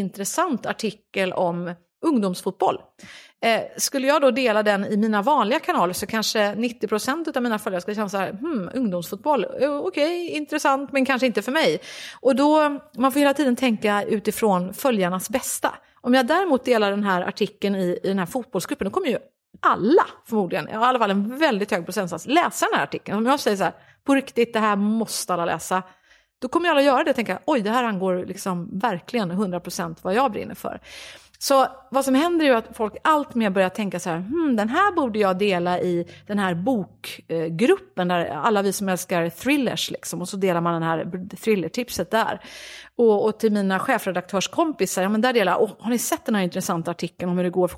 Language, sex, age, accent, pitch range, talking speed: English, female, 30-49, Swedish, 185-260 Hz, 205 wpm